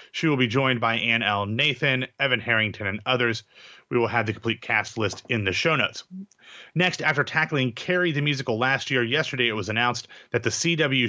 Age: 30-49